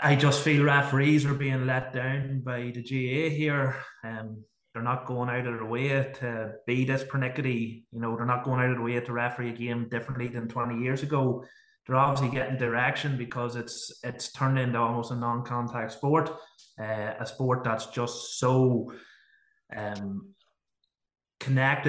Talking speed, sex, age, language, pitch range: 175 wpm, male, 20-39, English, 115-135 Hz